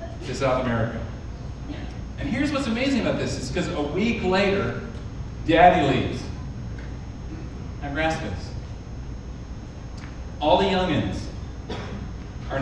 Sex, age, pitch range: male, 40-59, 105-160 Hz